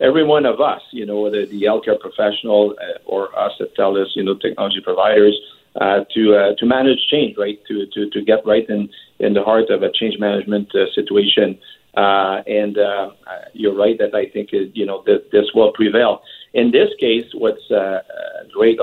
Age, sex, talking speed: 50-69, male, 200 wpm